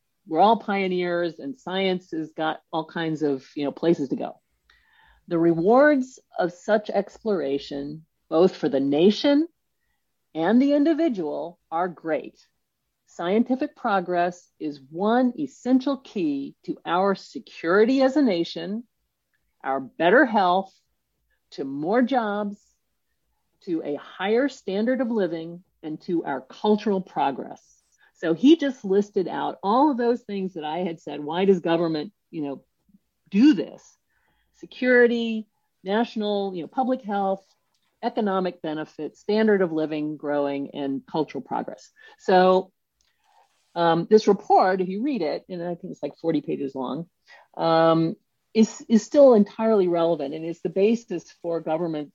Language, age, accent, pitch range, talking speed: English, 50-69, American, 160-225 Hz, 140 wpm